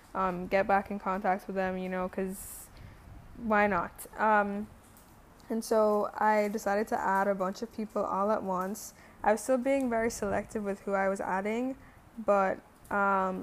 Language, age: English, 10-29